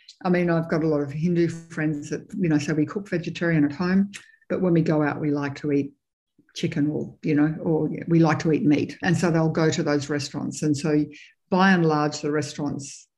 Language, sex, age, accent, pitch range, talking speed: English, female, 60-79, Australian, 155-180 Hz, 230 wpm